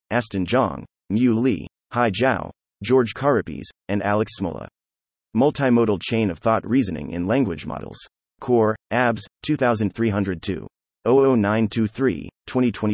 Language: English